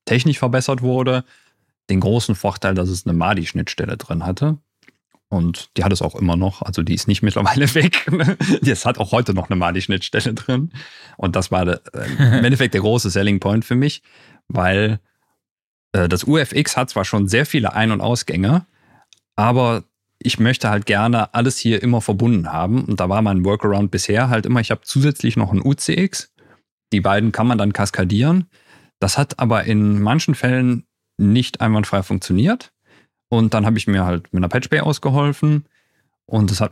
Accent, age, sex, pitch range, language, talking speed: German, 40-59, male, 95-120 Hz, German, 180 wpm